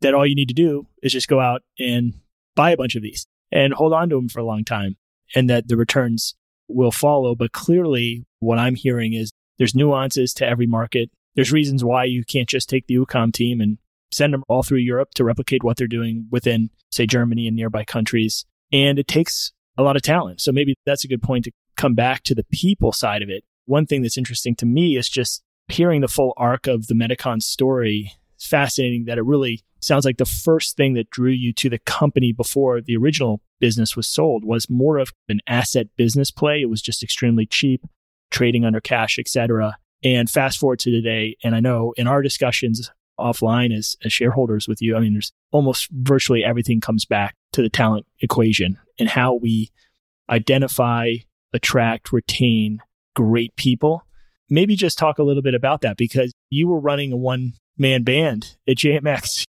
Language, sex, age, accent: English, male, 30-49, American